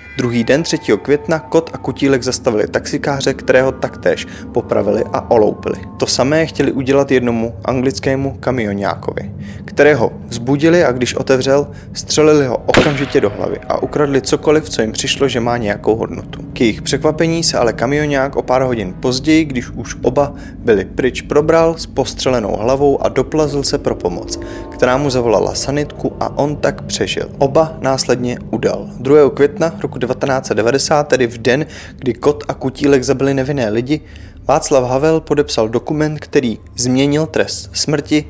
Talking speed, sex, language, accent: 155 wpm, male, Czech, native